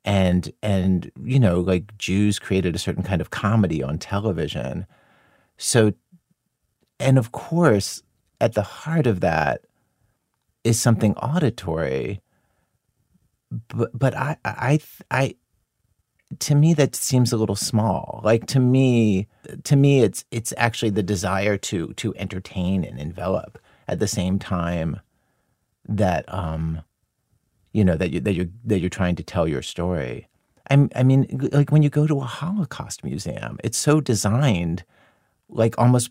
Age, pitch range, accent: 40-59, 95-130 Hz, American